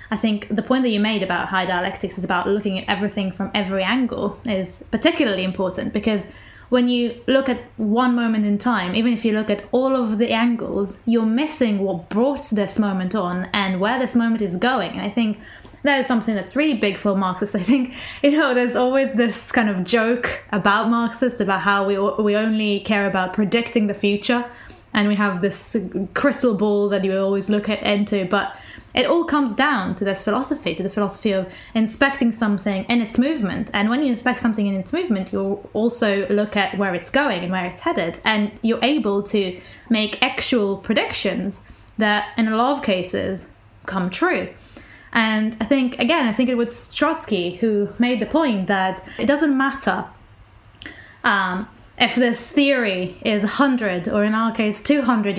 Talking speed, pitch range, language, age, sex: 190 wpm, 200-245 Hz, English, 20-39, female